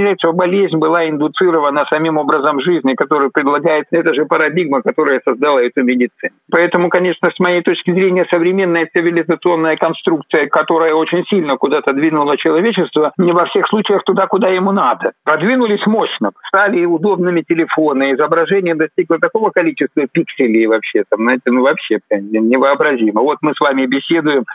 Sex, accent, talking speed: male, native, 145 wpm